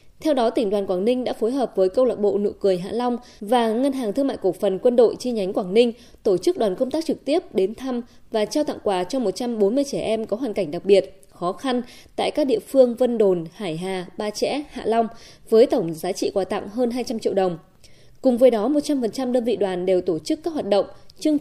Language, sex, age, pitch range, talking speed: Vietnamese, female, 20-39, 195-265 Hz, 250 wpm